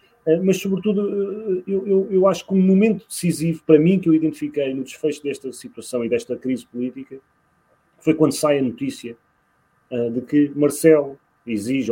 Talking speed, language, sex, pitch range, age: 160 wpm, Portuguese, male, 130-200 Hz, 30-49